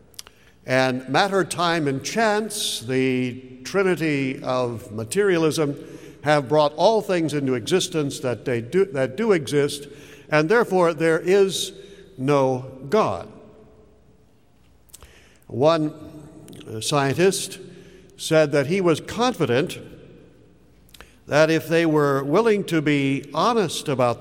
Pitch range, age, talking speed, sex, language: 130-190 Hz, 60-79, 105 wpm, male, English